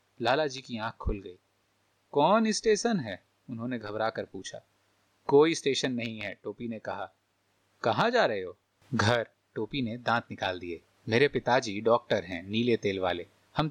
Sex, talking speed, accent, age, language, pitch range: male, 165 wpm, native, 30-49, Hindi, 110-150 Hz